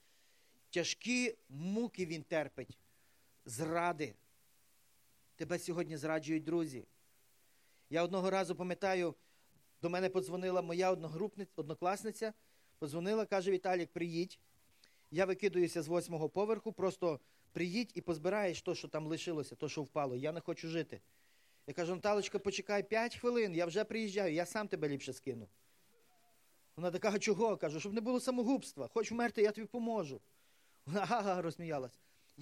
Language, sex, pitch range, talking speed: Russian, male, 150-205 Hz, 135 wpm